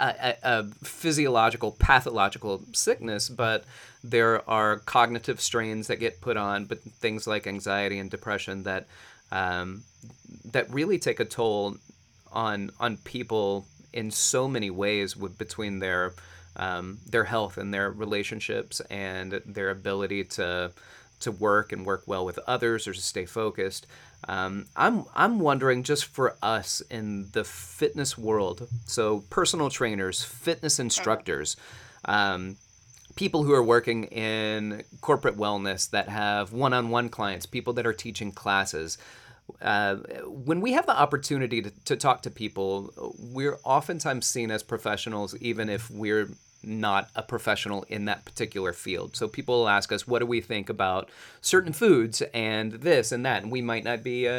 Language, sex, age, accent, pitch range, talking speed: English, male, 30-49, American, 100-125 Hz, 155 wpm